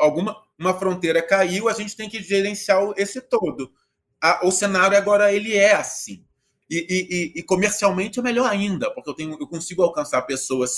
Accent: Brazilian